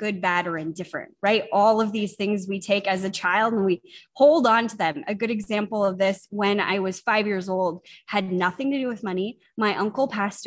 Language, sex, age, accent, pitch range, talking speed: English, female, 20-39, American, 185-220 Hz, 230 wpm